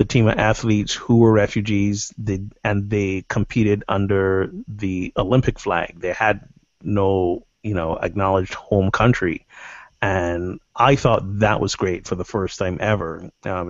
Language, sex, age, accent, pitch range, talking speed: English, male, 30-49, American, 95-115 Hz, 150 wpm